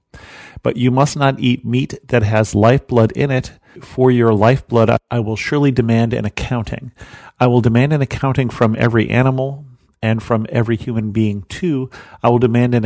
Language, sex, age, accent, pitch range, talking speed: English, male, 40-59, American, 105-125 Hz, 175 wpm